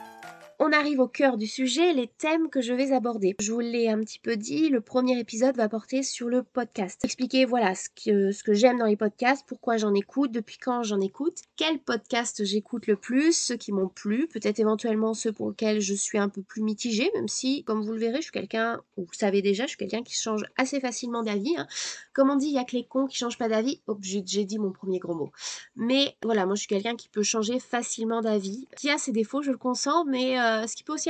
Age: 20-39